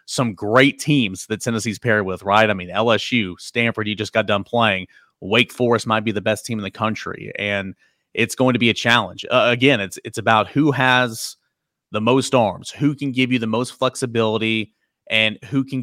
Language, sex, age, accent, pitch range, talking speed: English, male, 30-49, American, 110-125 Hz, 205 wpm